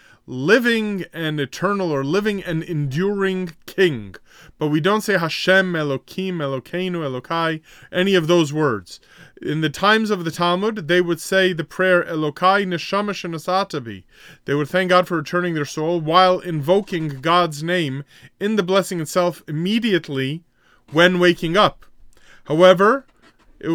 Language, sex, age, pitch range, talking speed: English, male, 30-49, 150-185 Hz, 140 wpm